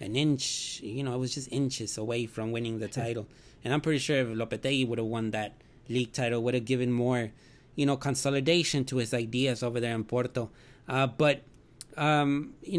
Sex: male